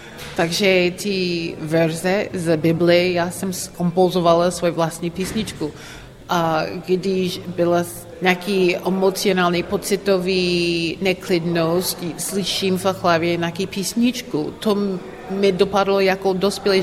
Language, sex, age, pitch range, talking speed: Slovak, female, 30-49, 155-190 Hz, 100 wpm